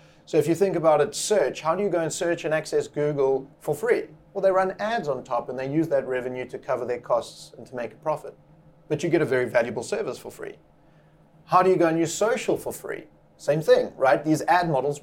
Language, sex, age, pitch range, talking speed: English, male, 30-49, 130-170 Hz, 250 wpm